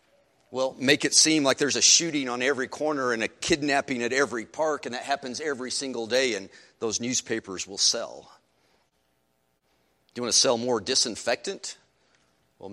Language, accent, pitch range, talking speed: English, American, 100-145 Hz, 170 wpm